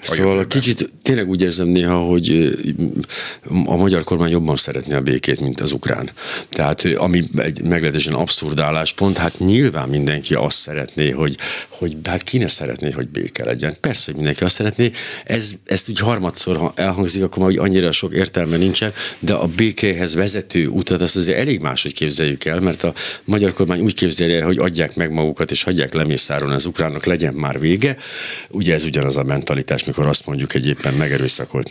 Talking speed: 175 wpm